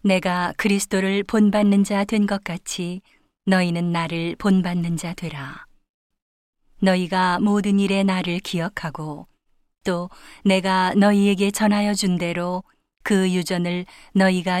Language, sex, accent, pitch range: Korean, female, native, 175-200 Hz